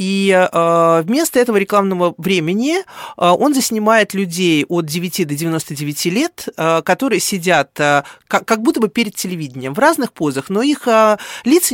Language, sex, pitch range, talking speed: Russian, male, 165-235 Hz, 135 wpm